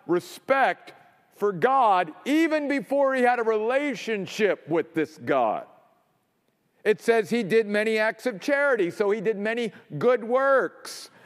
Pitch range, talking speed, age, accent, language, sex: 210-260 Hz, 140 wpm, 50-69, American, English, male